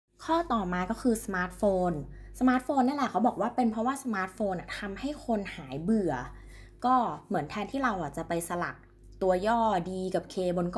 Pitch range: 155-215 Hz